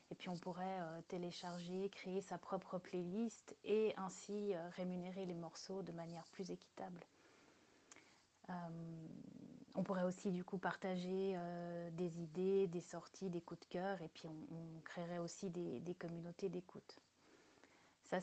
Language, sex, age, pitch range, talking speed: French, female, 30-49, 175-200 Hz, 155 wpm